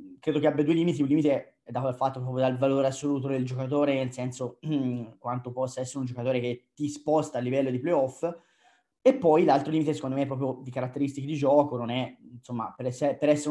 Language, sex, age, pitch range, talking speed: Italian, male, 20-39, 130-165 Hz, 220 wpm